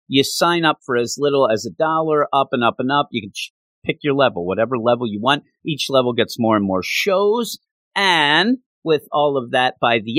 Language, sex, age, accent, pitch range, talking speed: English, male, 40-59, American, 120-160 Hz, 220 wpm